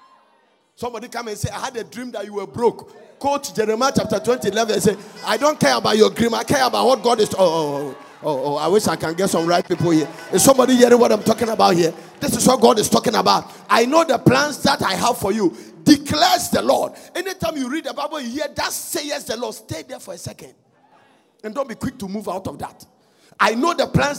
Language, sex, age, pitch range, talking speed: English, male, 50-69, 205-280 Hz, 250 wpm